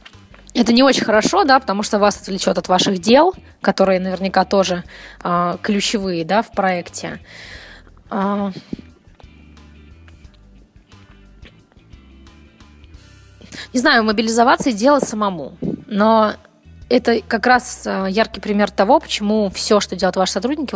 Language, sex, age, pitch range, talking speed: Russian, female, 20-39, 180-215 Hz, 115 wpm